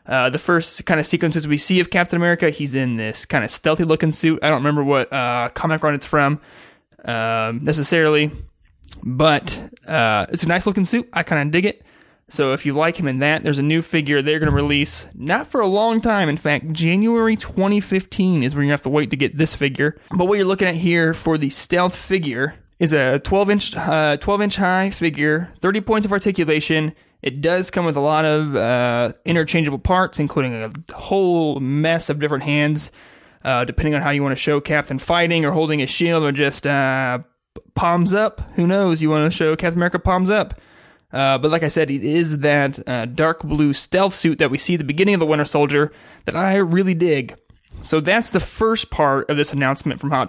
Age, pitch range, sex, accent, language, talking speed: 20-39, 145-175 Hz, male, American, English, 215 wpm